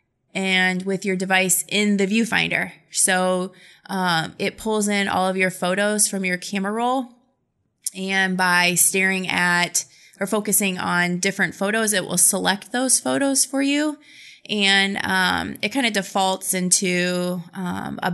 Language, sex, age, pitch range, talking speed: English, female, 20-39, 180-220 Hz, 150 wpm